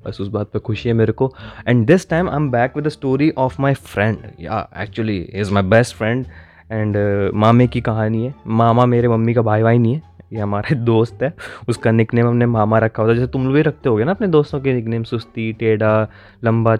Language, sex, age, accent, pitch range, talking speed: Hindi, male, 20-39, native, 100-120 Hz, 230 wpm